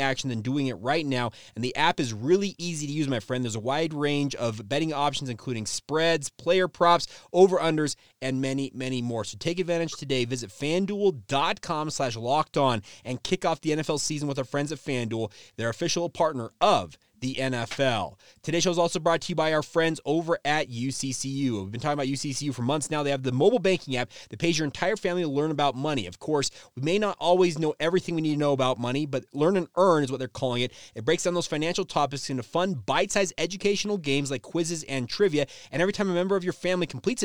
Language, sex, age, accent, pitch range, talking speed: English, male, 30-49, American, 130-170 Hz, 230 wpm